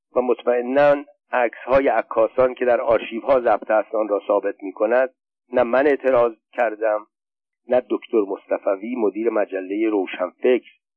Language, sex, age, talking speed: Persian, male, 50-69, 130 wpm